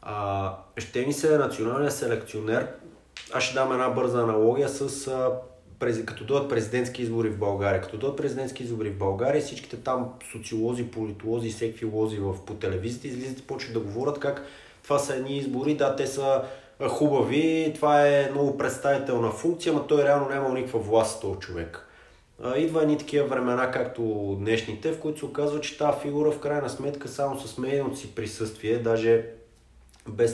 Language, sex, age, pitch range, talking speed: Bulgarian, male, 20-39, 110-140 Hz, 170 wpm